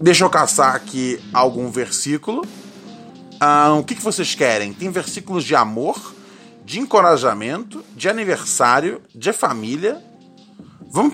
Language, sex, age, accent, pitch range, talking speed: Portuguese, male, 20-39, Brazilian, 145-230 Hz, 125 wpm